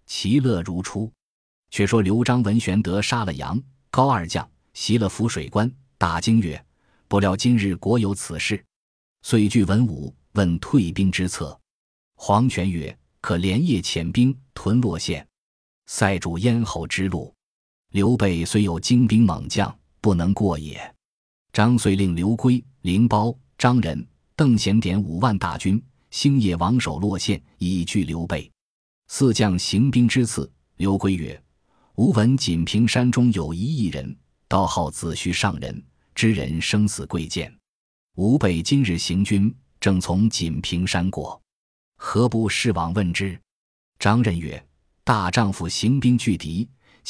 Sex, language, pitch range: male, Chinese, 85-115 Hz